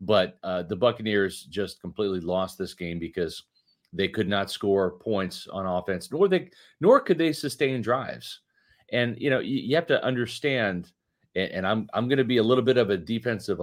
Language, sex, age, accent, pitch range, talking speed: English, male, 40-59, American, 100-130 Hz, 200 wpm